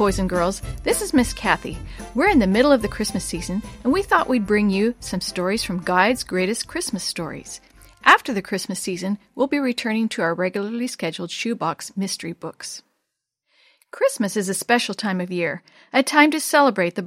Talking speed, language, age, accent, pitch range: 190 wpm, English, 40-59, American, 190-250 Hz